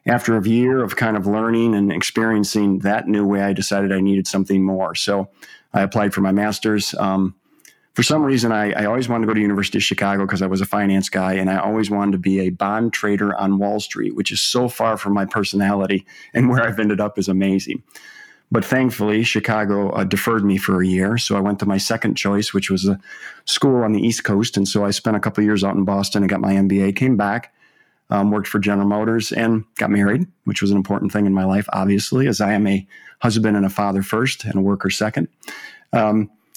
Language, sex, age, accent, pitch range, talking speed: English, male, 40-59, American, 100-110 Hz, 235 wpm